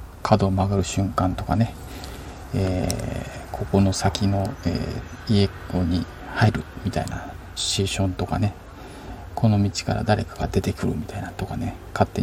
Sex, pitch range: male, 90-115 Hz